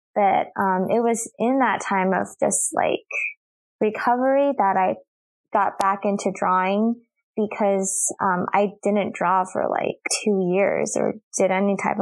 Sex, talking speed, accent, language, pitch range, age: female, 150 wpm, American, English, 195-235 Hz, 20-39